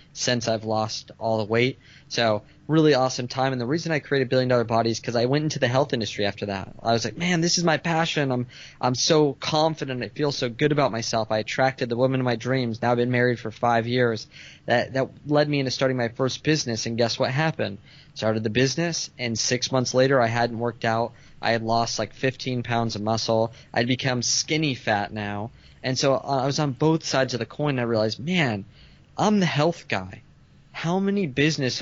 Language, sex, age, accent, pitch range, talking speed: English, male, 20-39, American, 115-145 Hz, 225 wpm